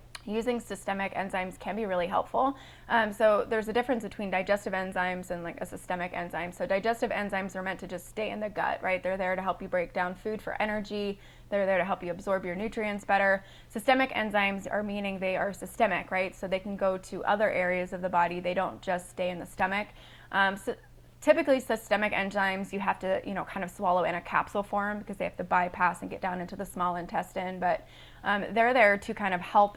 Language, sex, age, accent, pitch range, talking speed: English, female, 20-39, American, 185-205 Hz, 230 wpm